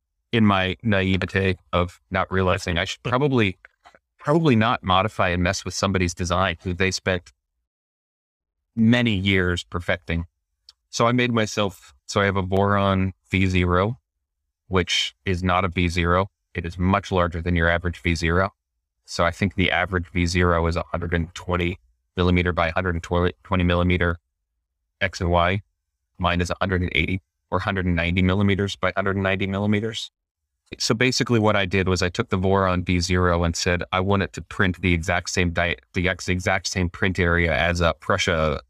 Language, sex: English, male